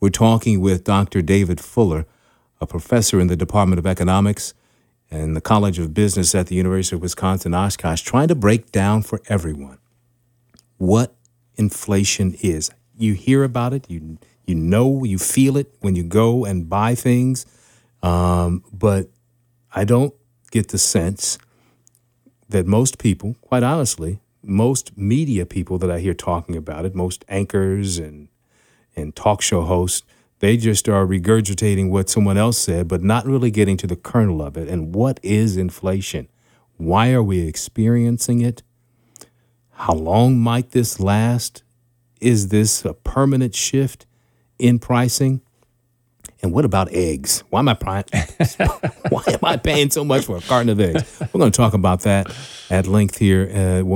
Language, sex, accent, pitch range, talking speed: English, male, American, 90-120 Hz, 160 wpm